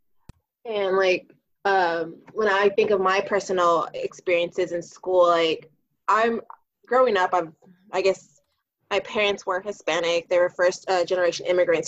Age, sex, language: 20-39, female, English